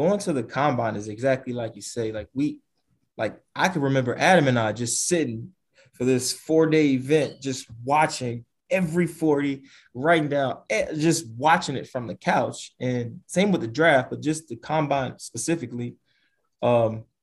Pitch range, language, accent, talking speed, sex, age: 120-140 Hz, English, American, 165 wpm, male, 20-39